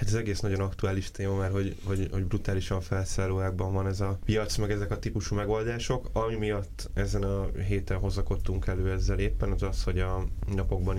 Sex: male